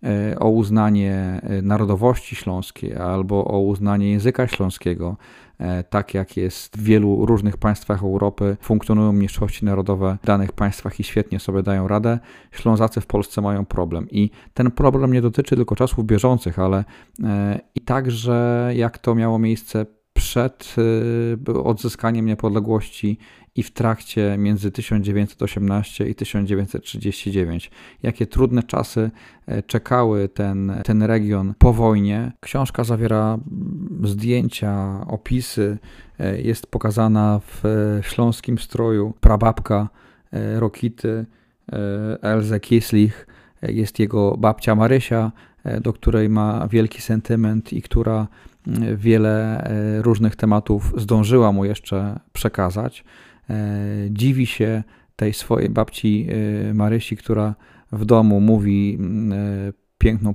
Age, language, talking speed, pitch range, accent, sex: 40-59, Polish, 110 wpm, 100-115 Hz, native, male